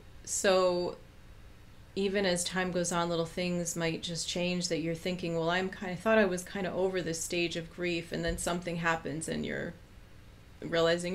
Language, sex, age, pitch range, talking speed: English, female, 30-49, 160-180 Hz, 190 wpm